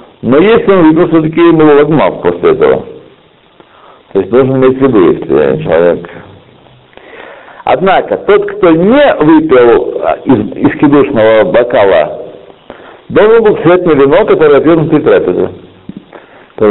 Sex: male